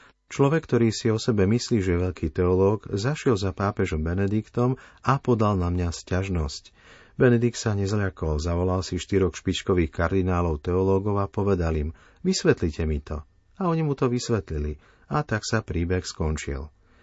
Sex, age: male, 40-59